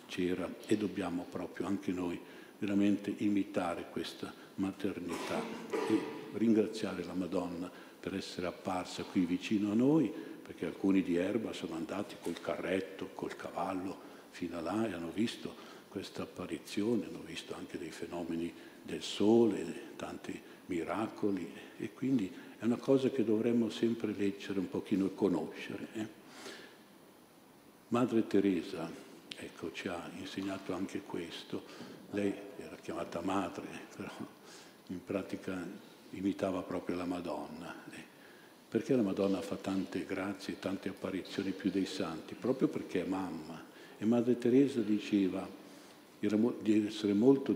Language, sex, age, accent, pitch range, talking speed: Italian, male, 50-69, native, 95-110 Hz, 130 wpm